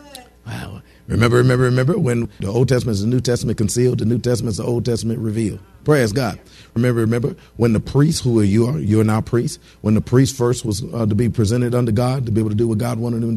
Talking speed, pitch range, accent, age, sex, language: 245 wpm, 110-135 Hz, American, 40-59, male, English